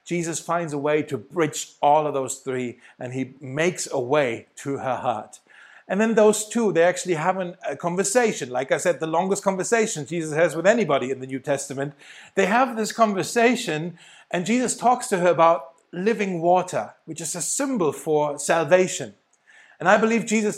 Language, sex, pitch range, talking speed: German, male, 150-190 Hz, 185 wpm